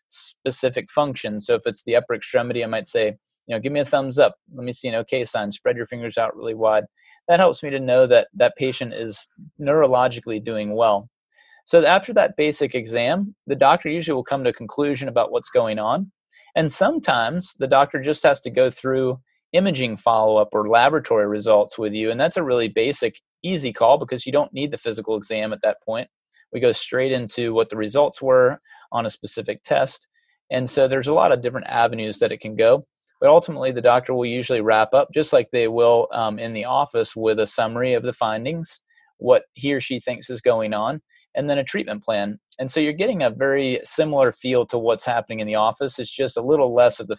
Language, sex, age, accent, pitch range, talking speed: English, male, 30-49, American, 115-145 Hz, 220 wpm